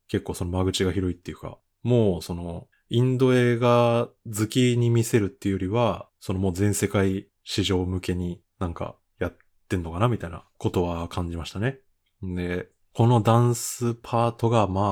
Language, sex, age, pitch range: Japanese, male, 20-39, 95-120 Hz